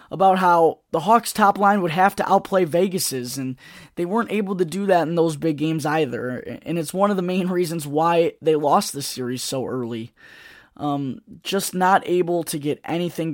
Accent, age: American, 10-29